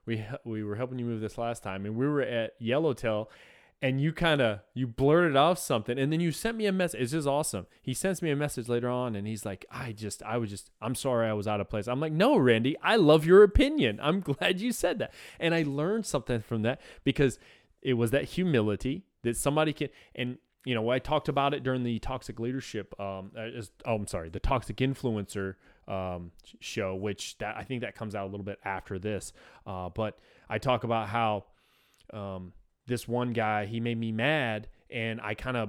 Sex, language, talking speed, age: male, English, 220 wpm, 20-39